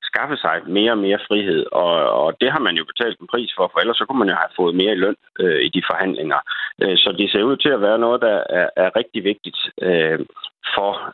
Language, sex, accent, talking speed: Danish, male, native, 250 wpm